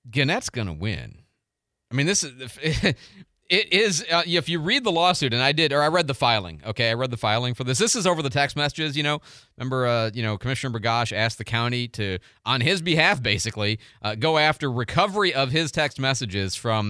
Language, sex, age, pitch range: English, male, 30-49, 115-160 Hz